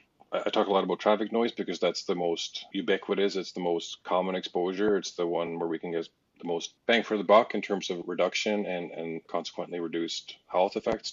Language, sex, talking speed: English, male, 215 wpm